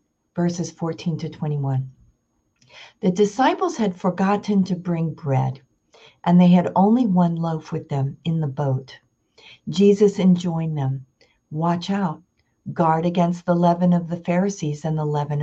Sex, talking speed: female, 145 wpm